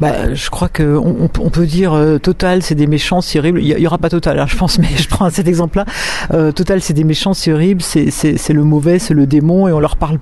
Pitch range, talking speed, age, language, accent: 160-190 Hz, 280 wpm, 50-69, French, French